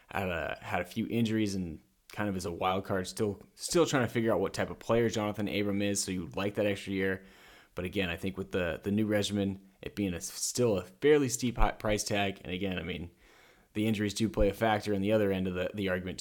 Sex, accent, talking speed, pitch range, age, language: male, American, 255 wpm, 90-110 Hz, 20-39, English